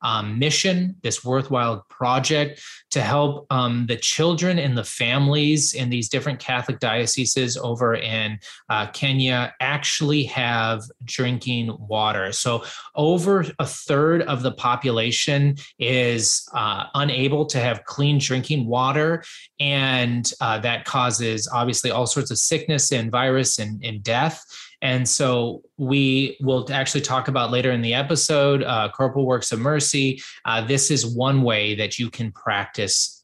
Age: 20-39